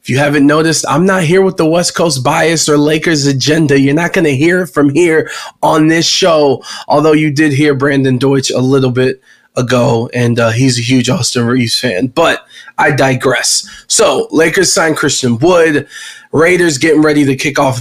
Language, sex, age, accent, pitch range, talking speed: English, male, 20-39, American, 135-165 Hz, 190 wpm